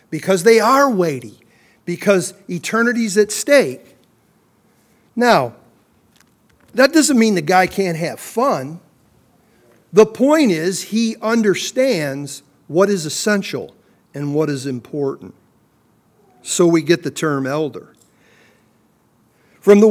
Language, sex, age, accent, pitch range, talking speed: English, male, 50-69, American, 160-205 Hz, 110 wpm